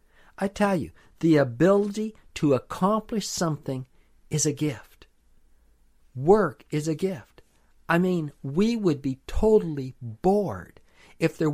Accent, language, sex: American, English, male